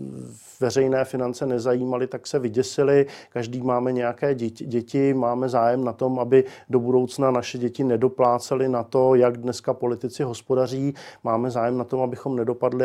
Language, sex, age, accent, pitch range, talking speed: Czech, male, 40-59, native, 120-130 Hz, 155 wpm